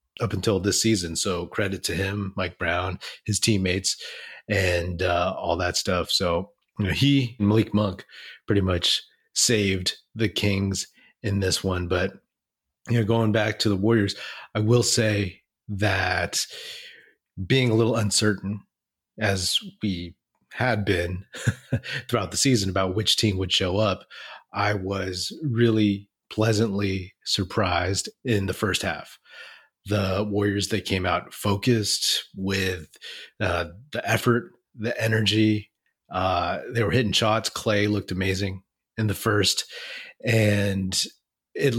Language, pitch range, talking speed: English, 95-115 Hz, 135 wpm